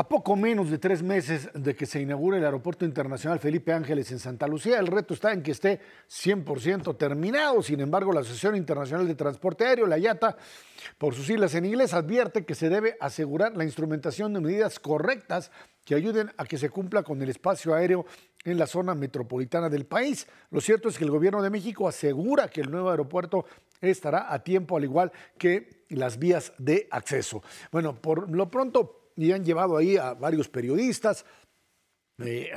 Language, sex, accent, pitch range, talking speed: Spanish, male, Mexican, 145-190 Hz, 190 wpm